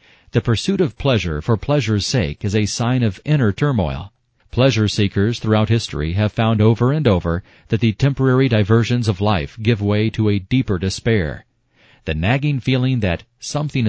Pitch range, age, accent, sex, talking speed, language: 100-120 Hz, 40-59, American, male, 165 wpm, English